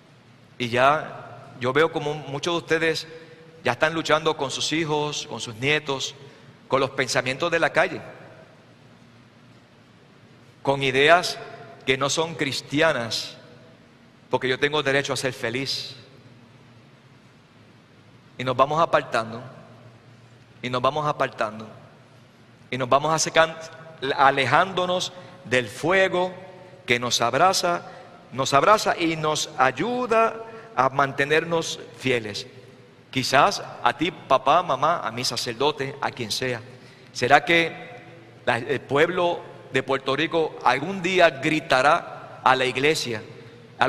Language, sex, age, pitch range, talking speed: Spanish, male, 50-69, 125-165 Hz, 120 wpm